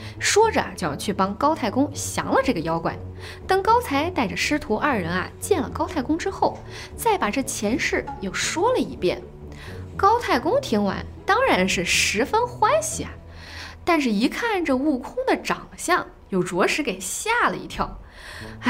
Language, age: Chinese, 20-39